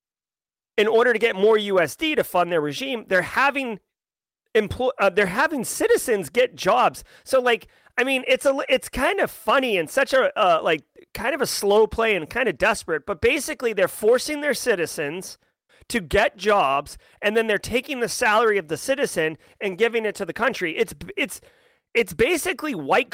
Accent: American